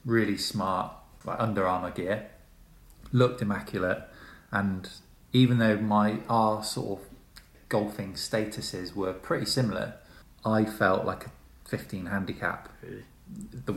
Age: 20-39